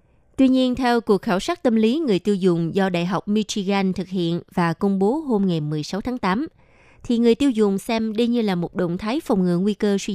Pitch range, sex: 185-240 Hz, female